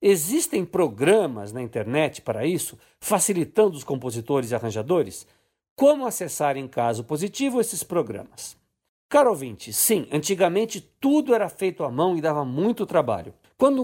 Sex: male